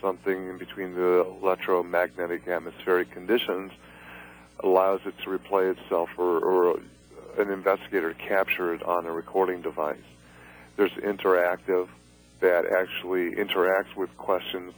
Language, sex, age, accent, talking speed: English, male, 40-59, American, 120 wpm